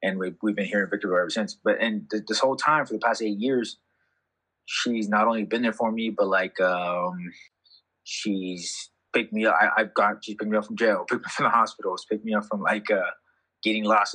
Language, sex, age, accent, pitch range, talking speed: English, male, 20-39, American, 100-115 Hz, 240 wpm